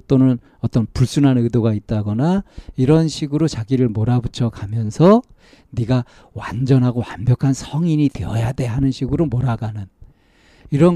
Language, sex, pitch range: Korean, male, 110-140 Hz